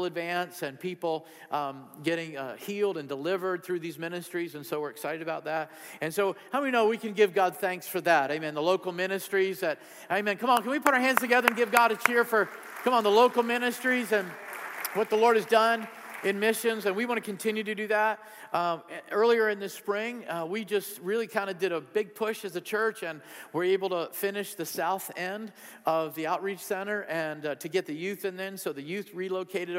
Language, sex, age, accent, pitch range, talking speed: English, male, 50-69, American, 160-205 Hz, 230 wpm